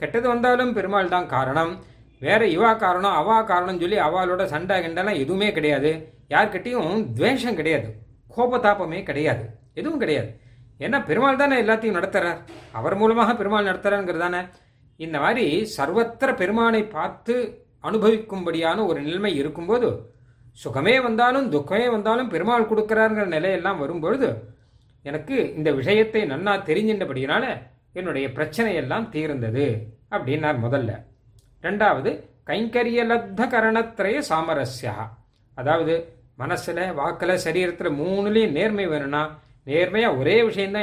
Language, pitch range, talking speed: Tamil, 145-215 Hz, 105 wpm